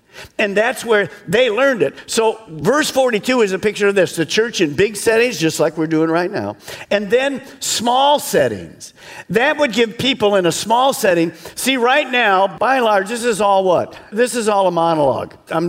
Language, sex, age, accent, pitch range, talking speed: English, male, 50-69, American, 150-220 Hz, 205 wpm